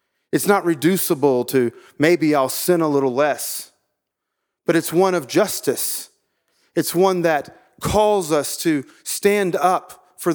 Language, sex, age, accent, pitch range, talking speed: English, male, 40-59, American, 150-190 Hz, 140 wpm